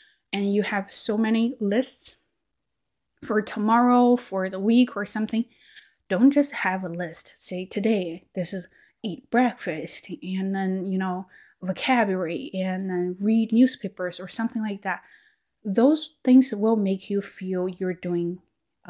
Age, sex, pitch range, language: 20-39, female, 180-220 Hz, Chinese